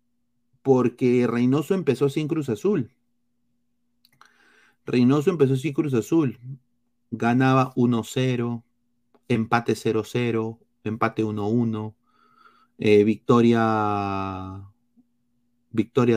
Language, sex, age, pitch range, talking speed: Spanish, male, 30-49, 115-140 Hz, 70 wpm